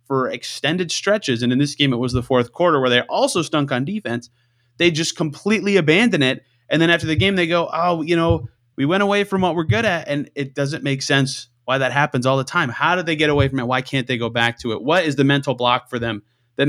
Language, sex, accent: English, male, American